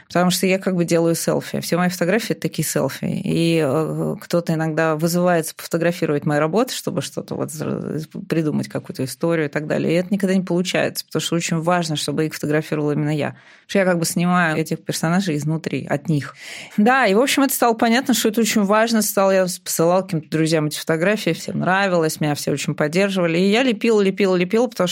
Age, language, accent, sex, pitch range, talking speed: 20-39, Russian, native, female, 155-190 Hz, 205 wpm